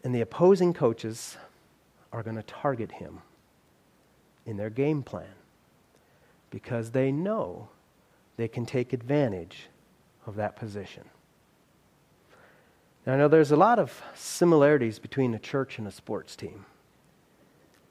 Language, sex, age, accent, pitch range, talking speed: English, male, 40-59, American, 135-195 Hz, 125 wpm